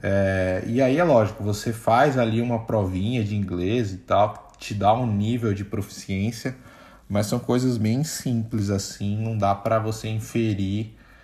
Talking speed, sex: 160 wpm, male